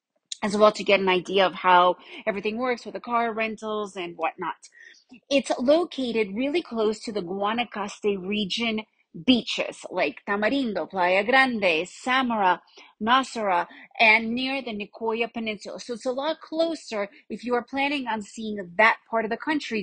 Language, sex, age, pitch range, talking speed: English, female, 30-49, 205-275 Hz, 155 wpm